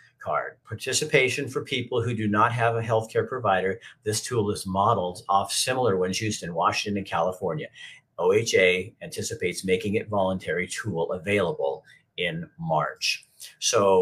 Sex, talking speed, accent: male, 140 wpm, American